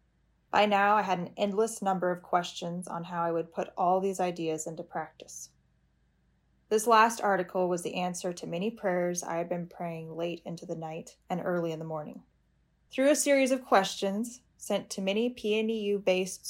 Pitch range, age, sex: 160-210 Hz, 10-29, female